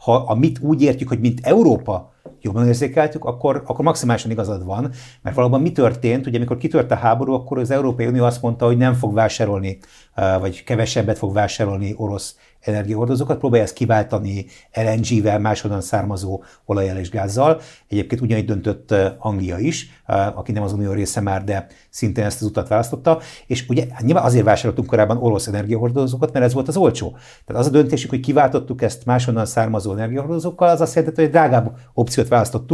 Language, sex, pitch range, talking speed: Hungarian, male, 110-135 Hz, 175 wpm